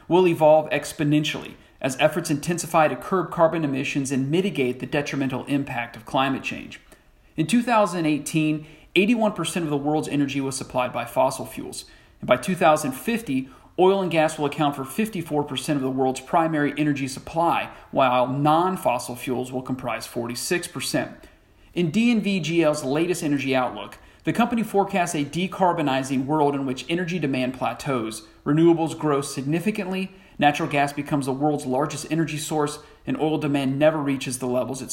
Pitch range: 135-175 Hz